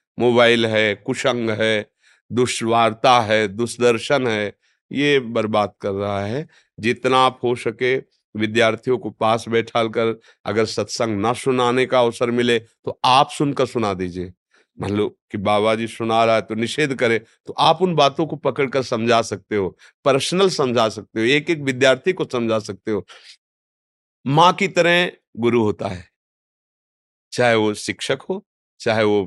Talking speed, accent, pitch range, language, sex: 155 wpm, native, 110-150 Hz, Hindi, male